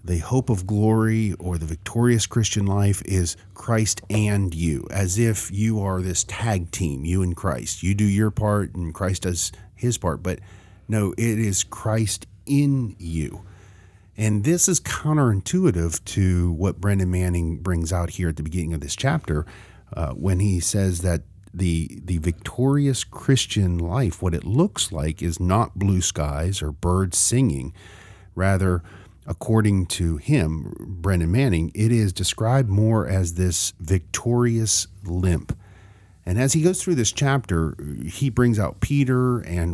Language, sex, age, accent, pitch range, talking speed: English, male, 40-59, American, 90-110 Hz, 155 wpm